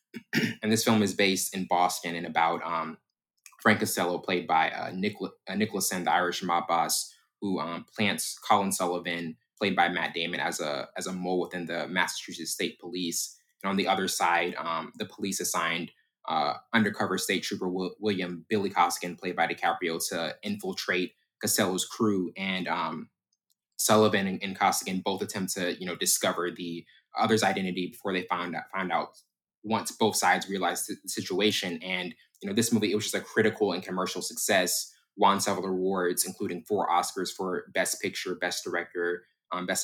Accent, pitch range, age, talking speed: American, 90-100 Hz, 20-39, 175 wpm